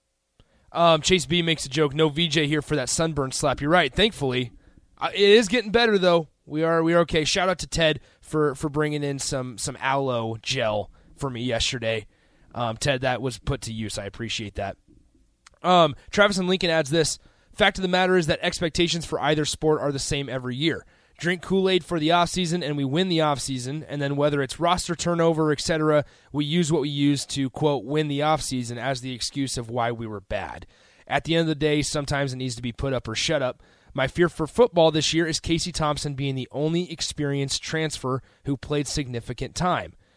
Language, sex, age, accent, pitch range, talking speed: English, male, 20-39, American, 125-165 Hz, 215 wpm